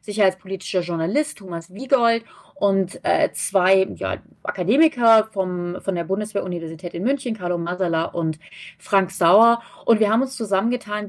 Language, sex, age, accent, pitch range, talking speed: German, female, 30-49, German, 185-230 Hz, 135 wpm